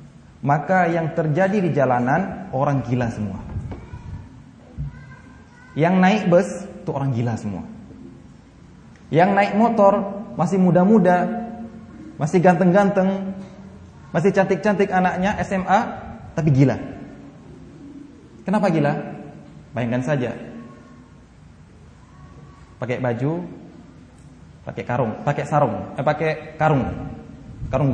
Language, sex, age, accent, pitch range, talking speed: Indonesian, male, 20-39, native, 125-160 Hz, 90 wpm